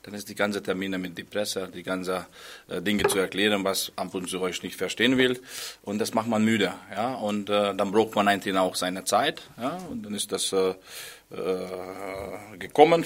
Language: German